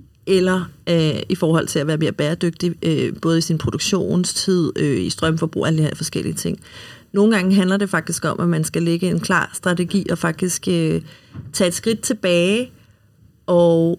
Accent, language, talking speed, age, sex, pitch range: native, Danish, 165 wpm, 40-59, female, 160-185 Hz